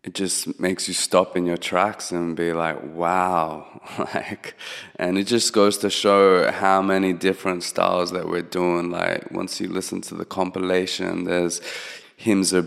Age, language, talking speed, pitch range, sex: 20-39, English, 170 wpm, 85-95 Hz, male